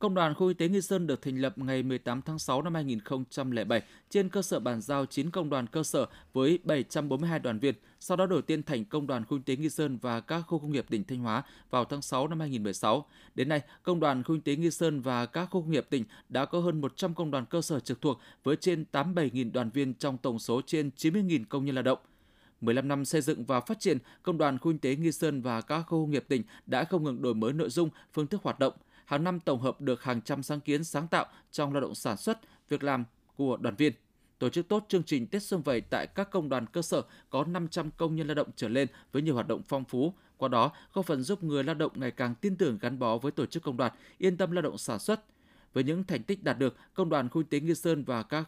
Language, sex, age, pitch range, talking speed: Vietnamese, male, 20-39, 130-165 Hz, 265 wpm